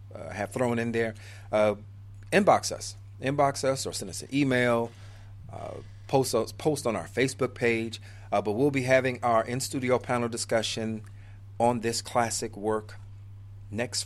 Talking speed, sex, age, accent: 160 wpm, male, 40-59, American